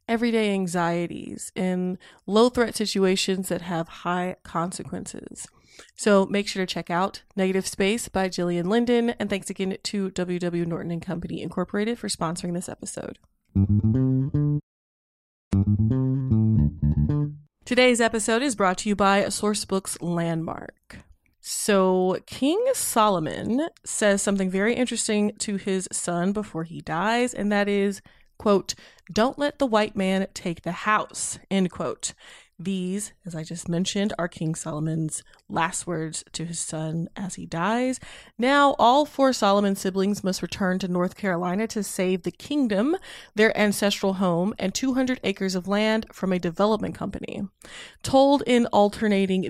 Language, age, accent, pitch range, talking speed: English, 20-39, American, 175-215 Hz, 140 wpm